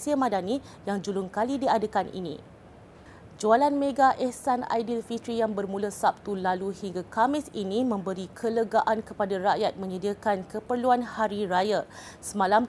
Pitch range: 195-240 Hz